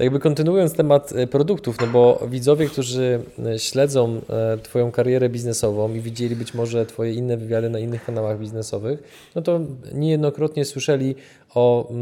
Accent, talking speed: native, 140 wpm